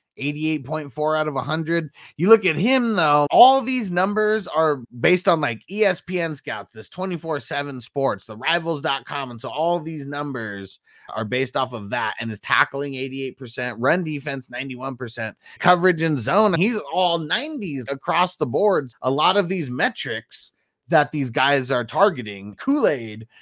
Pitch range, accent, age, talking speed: 135-180 Hz, American, 30-49, 150 wpm